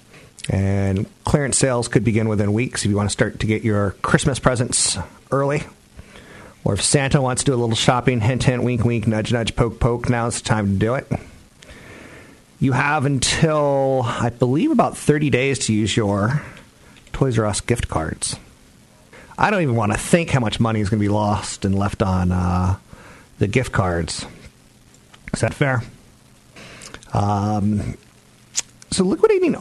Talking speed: 170 wpm